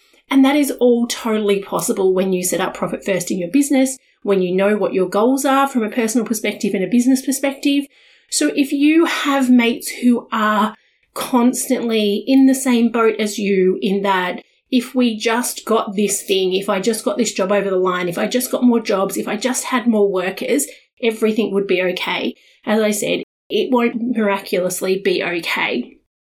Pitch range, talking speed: 205-270 Hz, 195 wpm